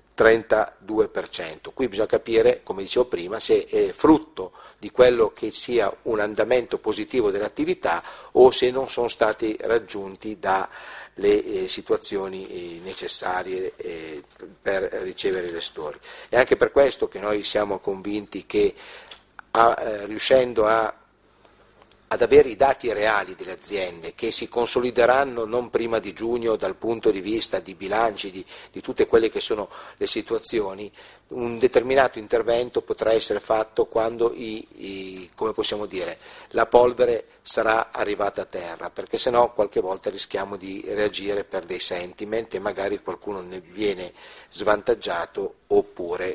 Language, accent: Italian, native